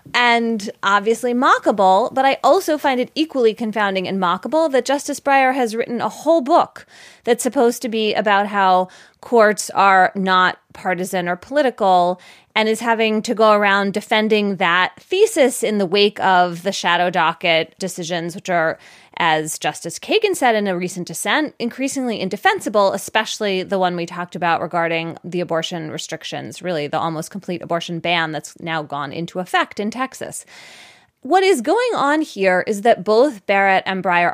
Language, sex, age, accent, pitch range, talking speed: English, female, 20-39, American, 180-245 Hz, 165 wpm